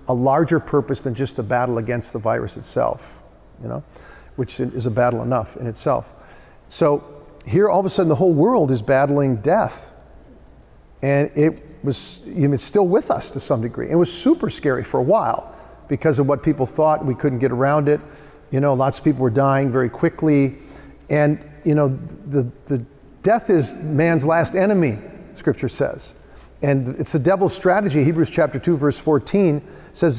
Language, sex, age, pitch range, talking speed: English, male, 50-69, 130-165 Hz, 185 wpm